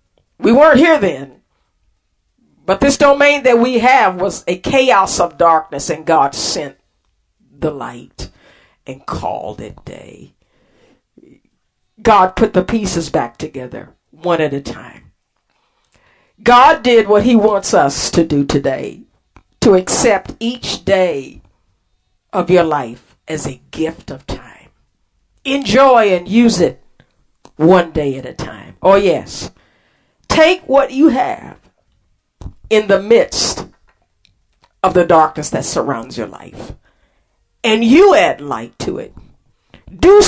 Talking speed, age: 130 wpm, 50-69